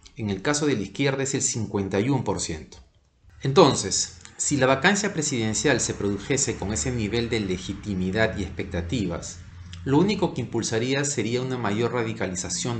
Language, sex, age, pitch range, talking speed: Spanish, male, 40-59, 100-130 Hz, 145 wpm